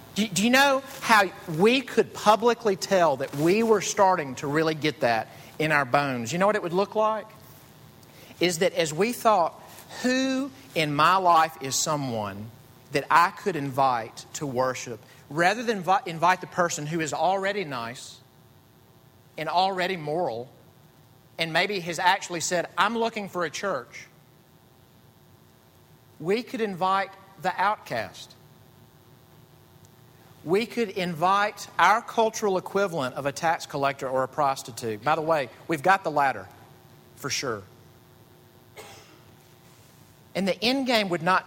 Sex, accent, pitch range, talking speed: male, American, 130-190 Hz, 140 wpm